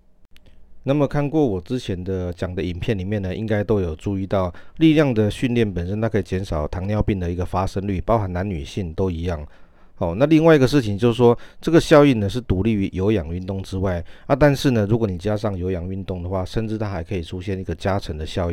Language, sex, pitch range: Chinese, male, 90-115 Hz